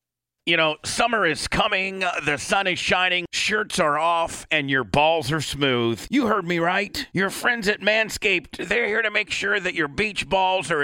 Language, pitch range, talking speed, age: English, 125-170 Hz, 200 wpm, 40-59